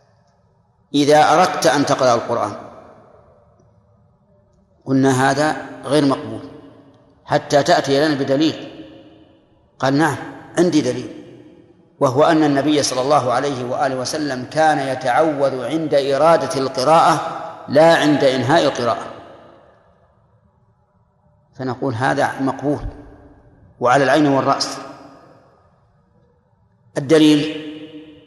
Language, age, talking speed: Arabic, 50-69, 85 wpm